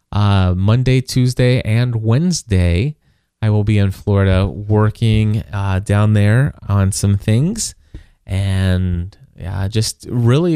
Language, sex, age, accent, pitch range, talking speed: English, male, 20-39, American, 105-120 Hz, 120 wpm